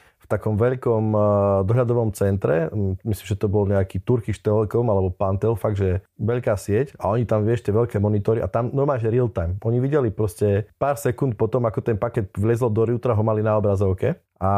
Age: 20-39